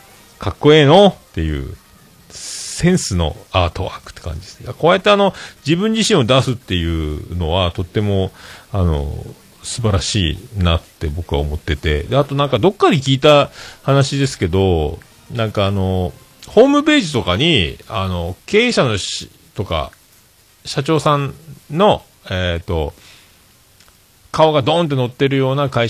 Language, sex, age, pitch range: Japanese, male, 40-59, 85-120 Hz